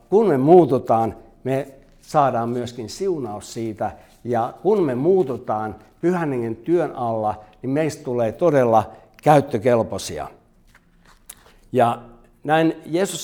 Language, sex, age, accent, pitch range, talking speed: Finnish, male, 60-79, native, 115-140 Hz, 105 wpm